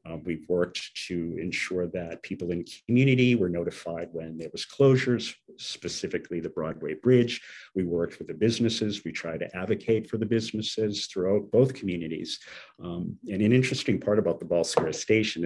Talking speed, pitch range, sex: 170 wpm, 90-120 Hz, male